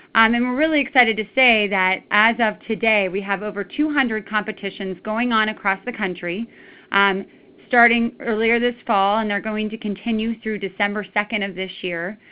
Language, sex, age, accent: English, female, 30-49, American